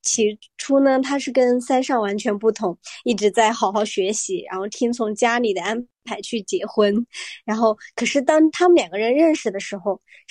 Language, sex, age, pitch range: Chinese, male, 20-39, 215-290 Hz